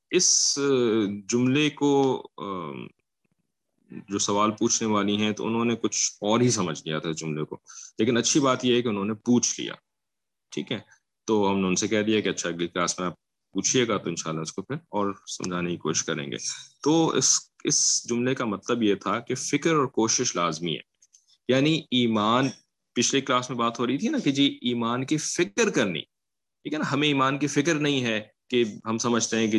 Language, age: English, 30-49